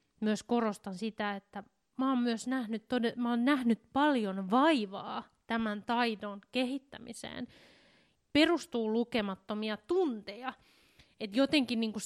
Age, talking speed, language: 20-39, 90 wpm, Finnish